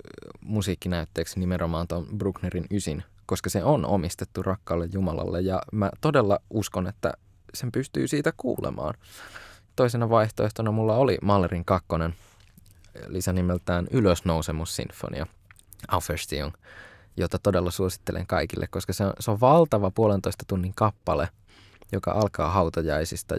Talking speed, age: 120 wpm, 20-39